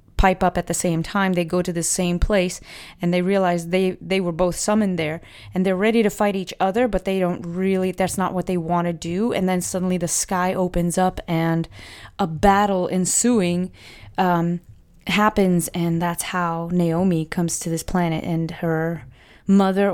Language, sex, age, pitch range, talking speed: English, female, 20-39, 170-185 Hz, 190 wpm